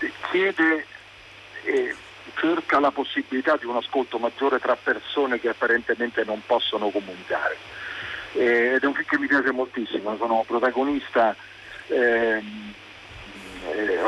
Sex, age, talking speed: male, 50-69, 130 wpm